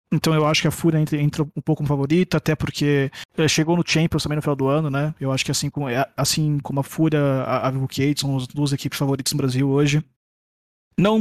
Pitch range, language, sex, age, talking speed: 135-155 Hz, Portuguese, male, 20-39, 215 wpm